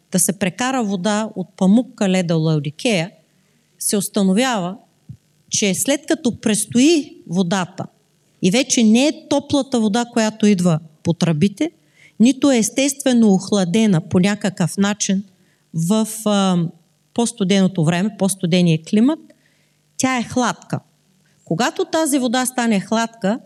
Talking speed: 120 wpm